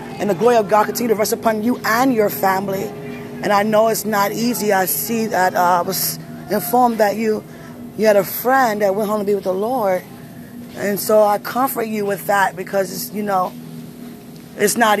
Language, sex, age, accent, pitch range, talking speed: English, female, 20-39, American, 195-220 Hz, 210 wpm